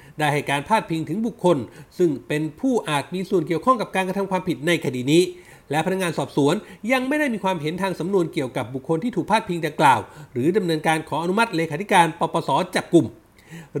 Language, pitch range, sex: Thai, 155-215 Hz, male